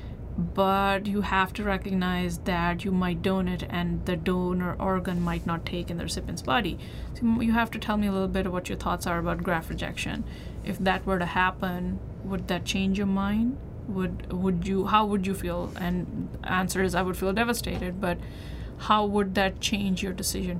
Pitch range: 180-205 Hz